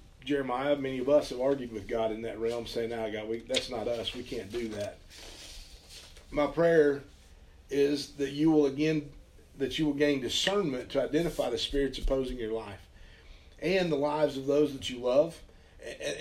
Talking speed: 185 wpm